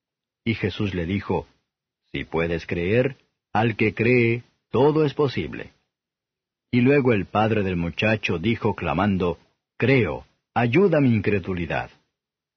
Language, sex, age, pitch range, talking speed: Spanish, male, 50-69, 95-125 Hz, 120 wpm